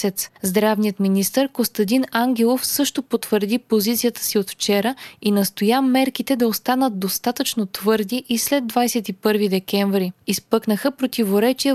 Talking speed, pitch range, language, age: 115 wpm, 205-245 Hz, Bulgarian, 20-39